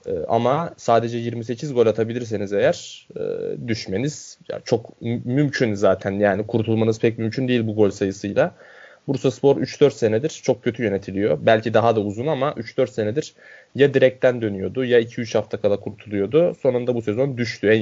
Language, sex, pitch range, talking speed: Turkish, male, 105-125 Hz, 150 wpm